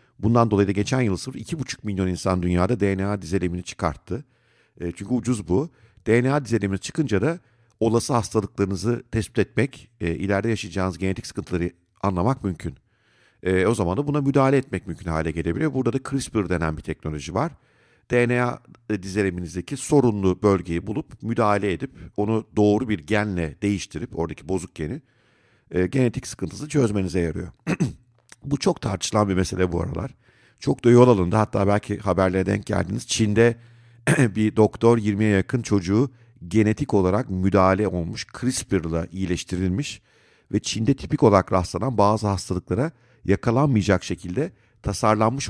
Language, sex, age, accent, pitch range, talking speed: Turkish, male, 50-69, native, 95-120 Hz, 135 wpm